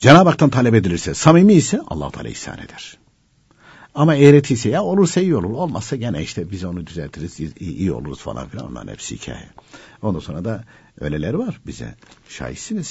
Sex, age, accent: male, 60-79, native